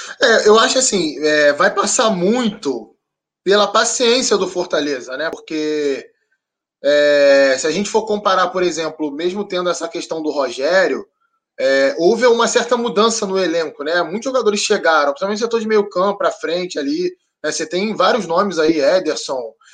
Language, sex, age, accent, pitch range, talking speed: Portuguese, male, 20-39, Brazilian, 170-240 Hz, 165 wpm